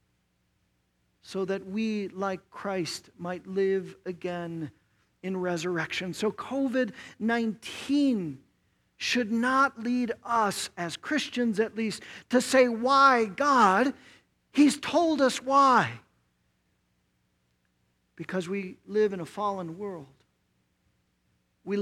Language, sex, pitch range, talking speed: English, male, 170-250 Hz, 100 wpm